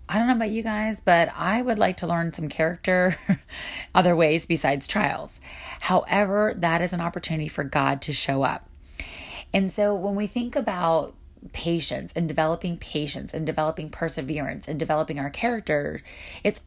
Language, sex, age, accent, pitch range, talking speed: English, female, 30-49, American, 150-185 Hz, 165 wpm